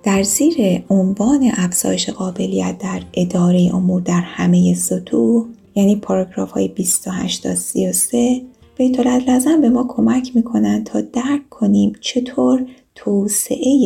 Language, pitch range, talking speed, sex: Persian, 185-250 Hz, 120 wpm, female